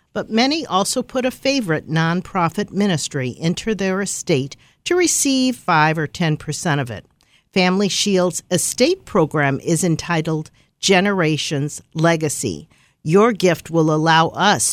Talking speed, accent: 125 wpm, American